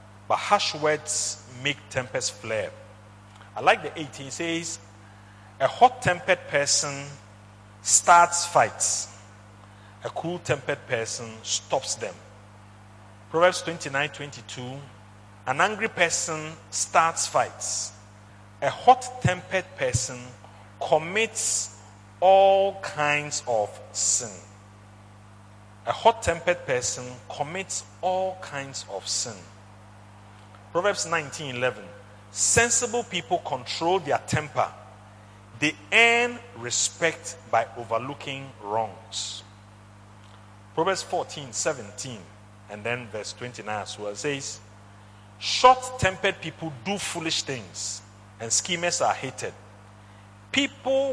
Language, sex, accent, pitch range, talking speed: English, male, Nigerian, 105-160 Hz, 90 wpm